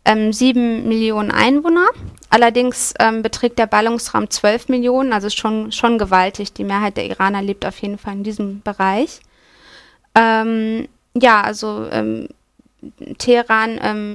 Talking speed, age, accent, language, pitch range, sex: 130 wpm, 20-39, German, German, 200-230 Hz, female